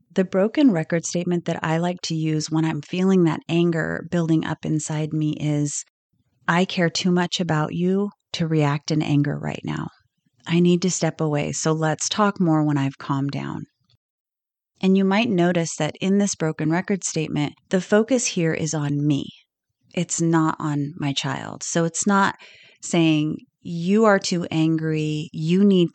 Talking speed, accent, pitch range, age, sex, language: 175 wpm, American, 155-190 Hz, 30-49, female, English